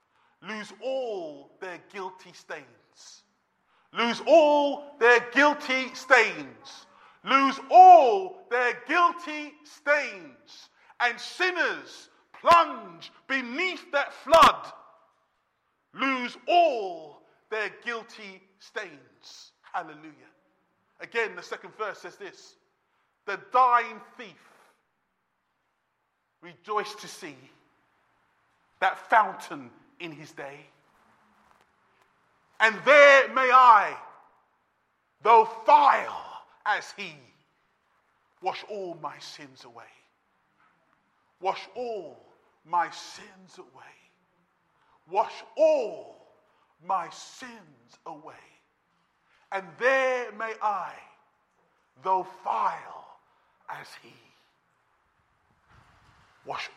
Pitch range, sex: 205-300 Hz, male